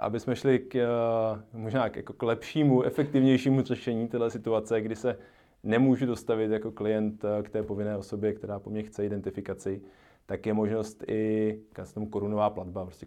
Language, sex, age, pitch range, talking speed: Czech, male, 20-39, 100-115 Hz, 160 wpm